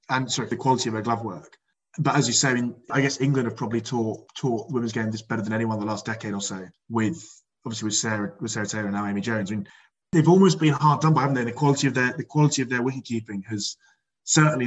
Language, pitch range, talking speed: English, 110-130 Hz, 270 wpm